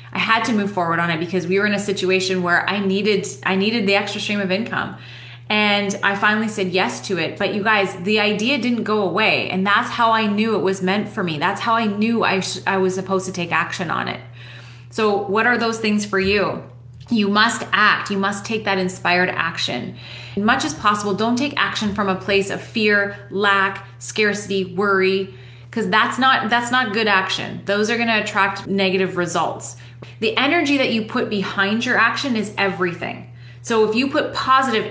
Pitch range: 185-225 Hz